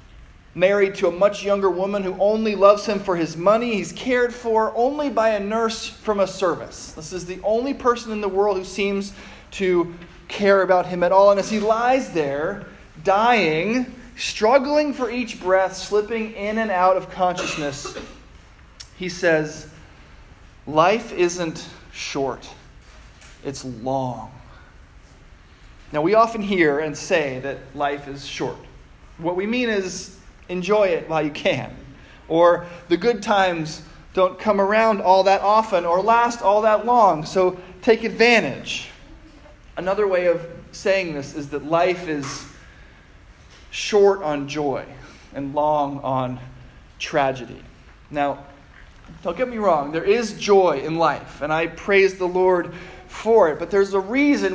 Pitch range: 155-210 Hz